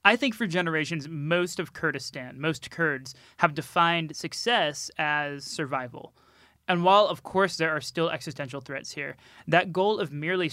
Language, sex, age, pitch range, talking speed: English, male, 20-39, 140-165 Hz, 160 wpm